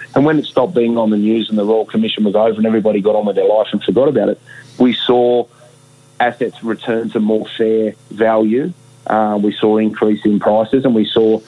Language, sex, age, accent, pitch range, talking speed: English, male, 30-49, Australian, 105-120 Hz, 220 wpm